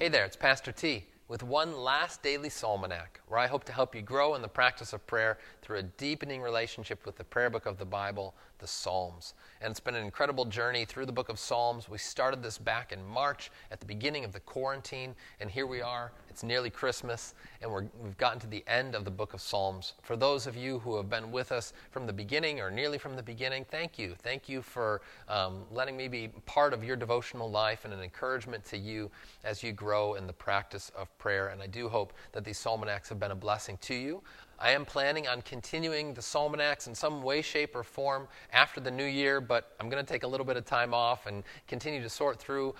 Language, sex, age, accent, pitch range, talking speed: English, male, 30-49, American, 105-130 Hz, 235 wpm